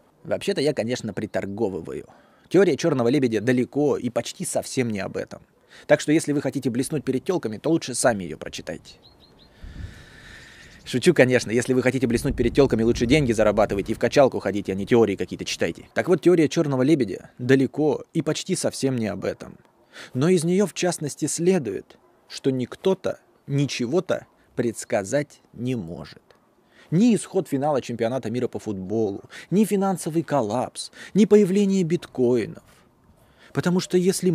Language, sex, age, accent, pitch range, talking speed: Russian, male, 20-39, native, 125-180 Hz, 150 wpm